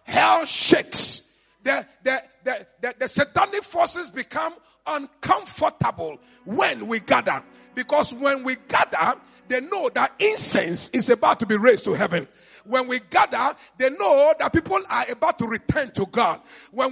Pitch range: 235-310 Hz